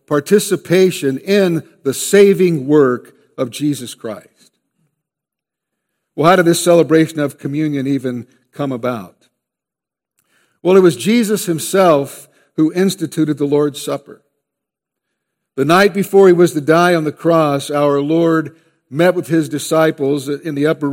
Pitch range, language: 140-170 Hz, English